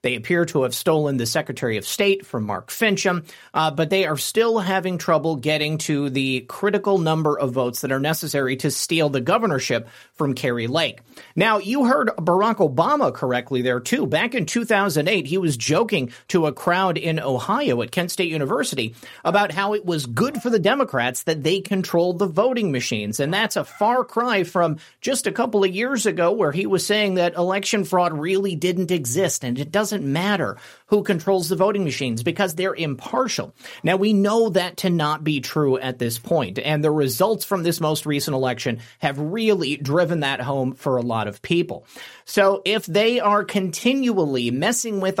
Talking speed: 190 wpm